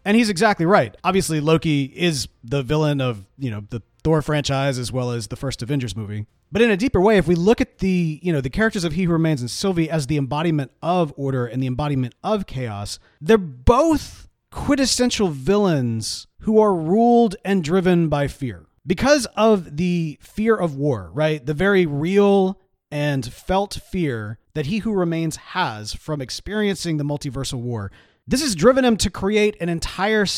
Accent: American